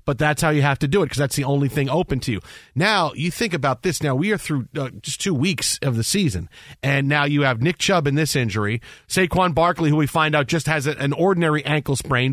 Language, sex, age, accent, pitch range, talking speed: English, male, 40-59, American, 140-175 Hz, 260 wpm